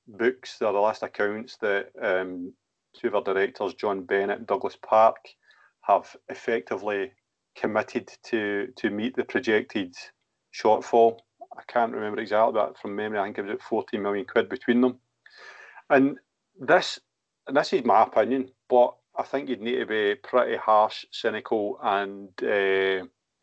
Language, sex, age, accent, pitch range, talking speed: English, male, 40-59, British, 100-125 Hz, 155 wpm